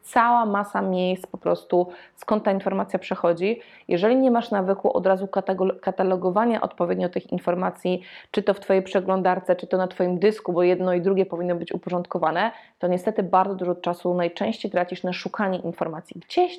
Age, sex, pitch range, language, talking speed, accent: 20-39, female, 185-210 Hz, Polish, 175 wpm, native